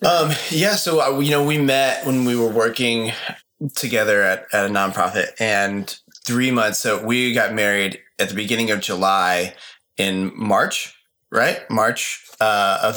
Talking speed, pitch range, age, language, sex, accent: 155 wpm, 95-115 Hz, 20-39, English, male, American